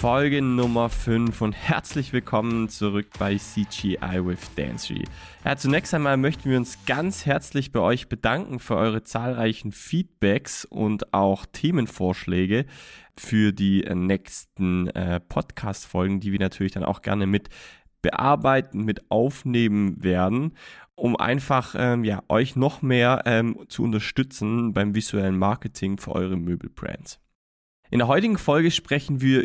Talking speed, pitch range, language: 135 wpm, 100-135 Hz, German